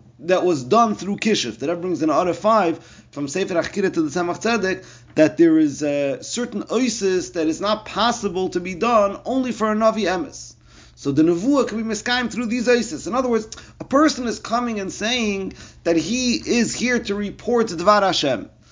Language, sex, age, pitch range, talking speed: English, male, 30-49, 160-240 Hz, 195 wpm